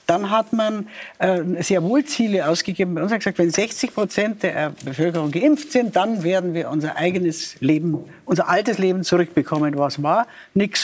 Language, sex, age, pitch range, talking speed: German, female, 60-79, 165-205 Hz, 190 wpm